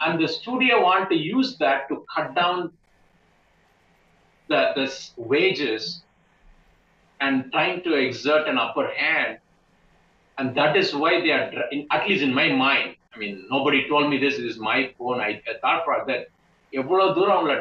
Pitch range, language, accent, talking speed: 150-215 Hz, Tamil, native, 155 wpm